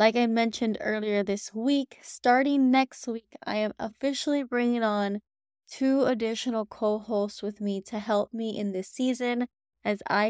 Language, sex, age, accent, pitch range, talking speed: English, female, 20-39, American, 205-245 Hz, 155 wpm